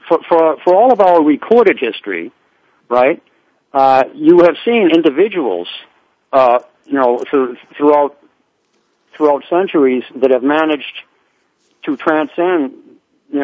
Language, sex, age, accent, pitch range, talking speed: English, male, 60-79, American, 130-170 Hz, 120 wpm